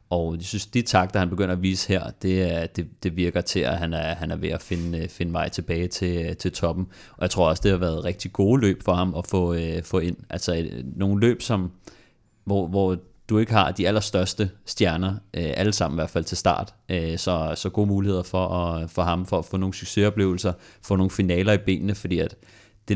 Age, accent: 30-49, native